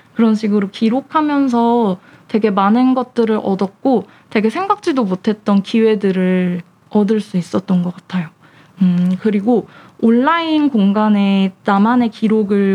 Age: 20-39